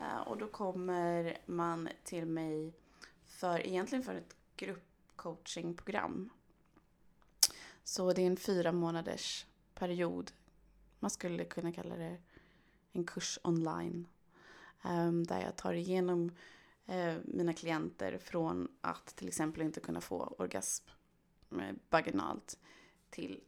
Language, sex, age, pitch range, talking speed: Swedish, female, 20-39, 150-185 Hz, 105 wpm